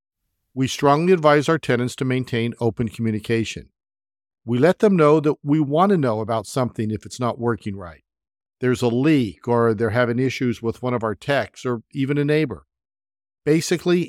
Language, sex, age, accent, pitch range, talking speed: English, male, 50-69, American, 110-140 Hz, 180 wpm